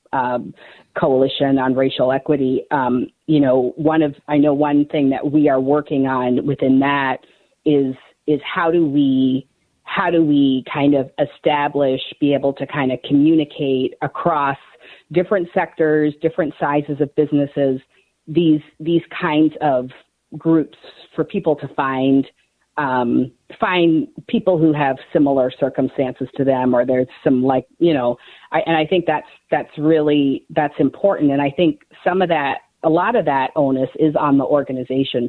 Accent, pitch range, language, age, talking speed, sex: American, 135-160 Hz, English, 40-59, 160 wpm, female